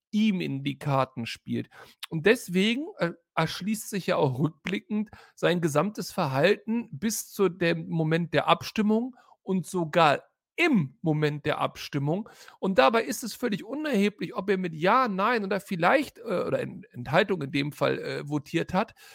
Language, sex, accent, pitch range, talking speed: German, male, German, 170-220 Hz, 150 wpm